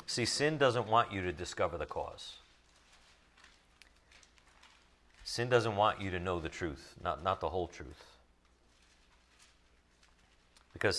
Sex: male